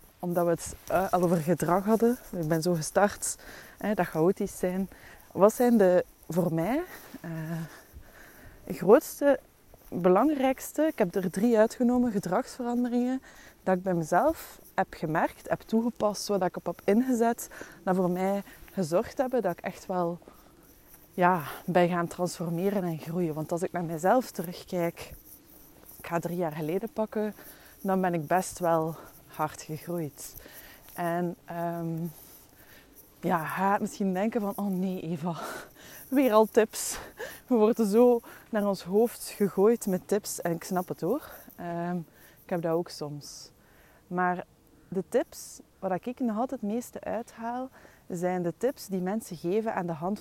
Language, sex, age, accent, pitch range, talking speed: Dutch, female, 20-39, Dutch, 170-215 Hz, 155 wpm